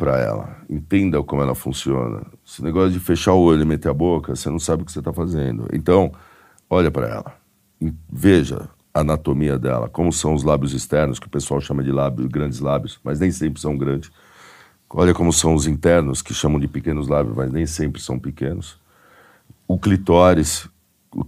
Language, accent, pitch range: Portuguese, Brazilian, 70-90 Hz